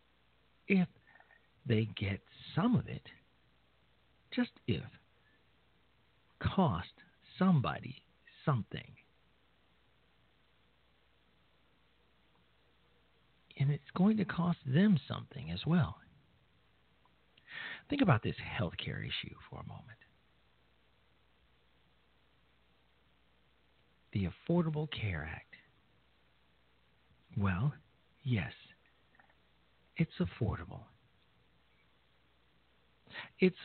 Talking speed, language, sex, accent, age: 70 wpm, English, male, American, 50-69